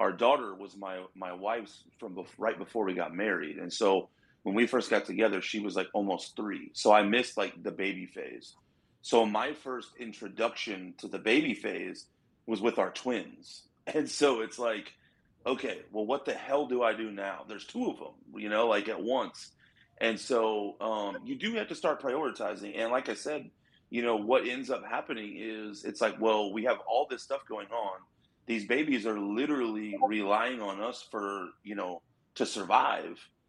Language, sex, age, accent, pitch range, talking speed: English, male, 30-49, American, 100-115 Hz, 195 wpm